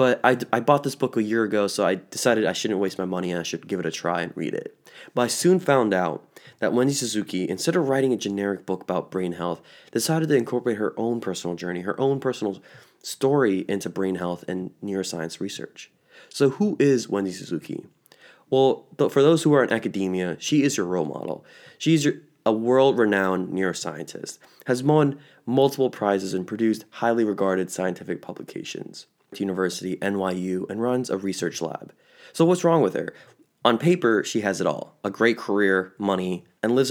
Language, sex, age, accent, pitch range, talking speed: English, male, 20-39, American, 95-135 Hz, 190 wpm